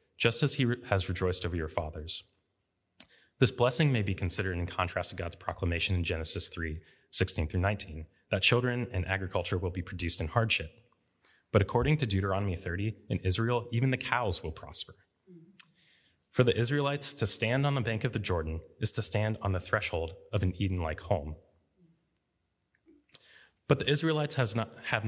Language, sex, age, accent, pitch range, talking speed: English, male, 20-39, American, 90-120 Hz, 165 wpm